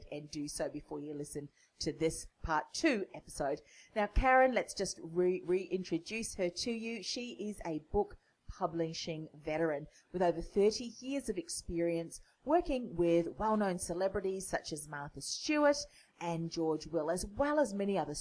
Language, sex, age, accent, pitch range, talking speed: English, female, 40-59, Australian, 160-210 Hz, 155 wpm